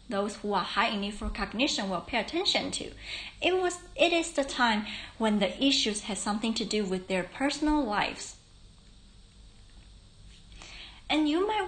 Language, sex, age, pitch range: Chinese, female, 30-49, 210-295 Hz